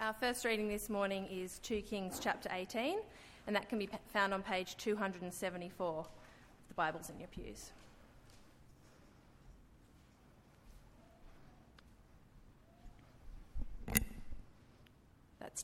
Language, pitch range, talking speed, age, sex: English, 190-245 Hz, 95 wpm, 30-49, female